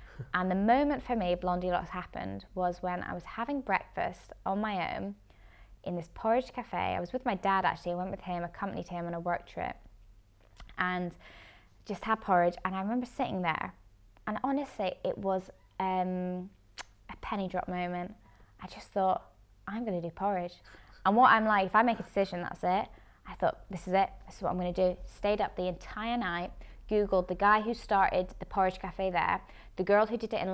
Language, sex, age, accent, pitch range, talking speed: English, female, 20-39, British, 175-200 Hz, 210 wpm